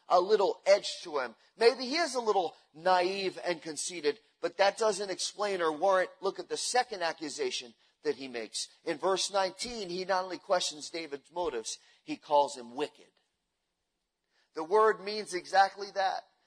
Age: 40-59